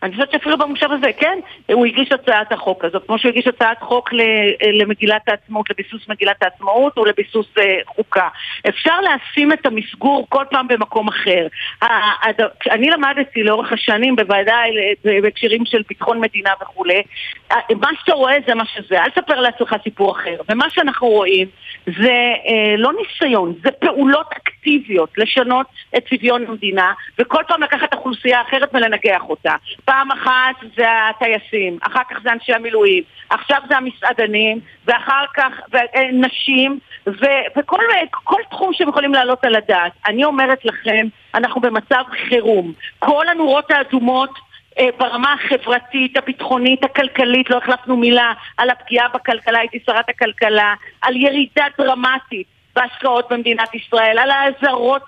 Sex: female